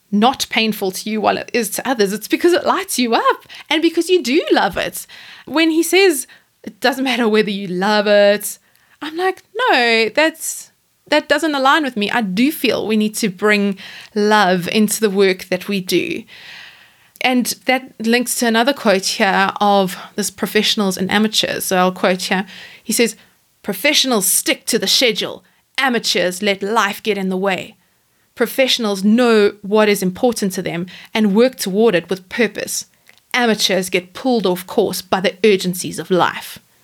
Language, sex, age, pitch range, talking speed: English, female, 20-39, 195-260 Hz, 175 wpm